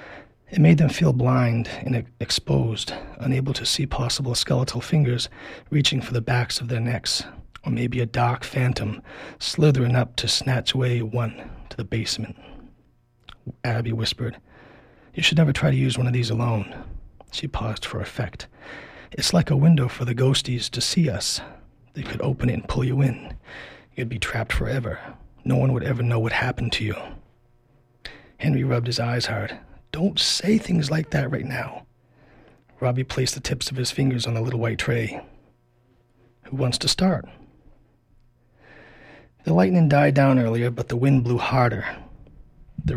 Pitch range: 120-140 Hz